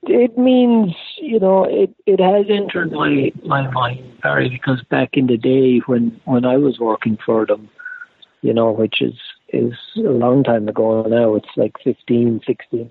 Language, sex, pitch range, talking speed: English, male, 120-150 Hz, 175 wpm